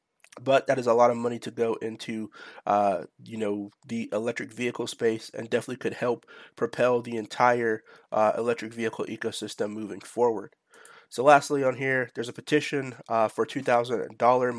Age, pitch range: 30-49, 110-130 Hz